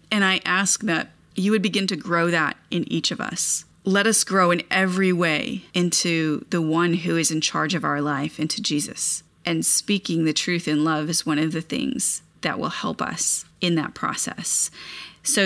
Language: English